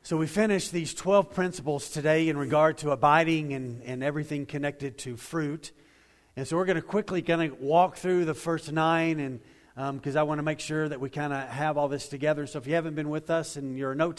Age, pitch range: 40-59, 145-180 Hz